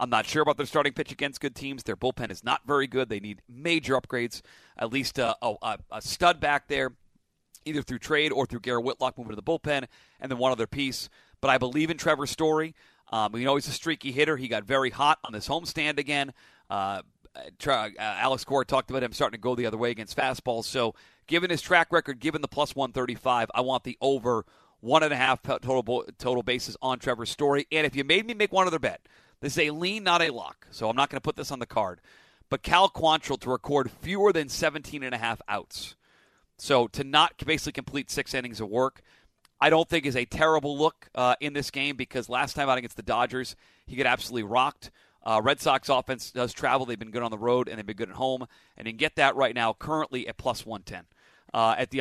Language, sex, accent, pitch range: English, male, American, 125-155 Hz